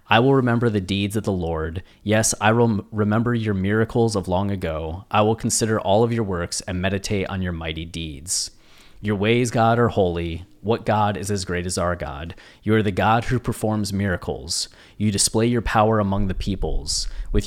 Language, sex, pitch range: English, male, 90-110 Hz